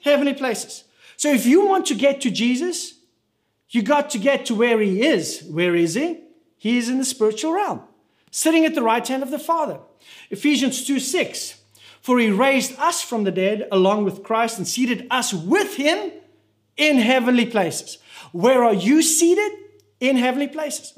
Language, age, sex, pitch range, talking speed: English, 40-59, male, 195-295 Hz, 180 wpm